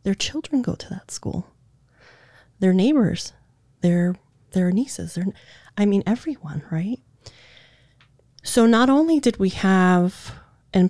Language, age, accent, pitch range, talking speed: English, 30-49, American, 130-185 Hz, 125 wpm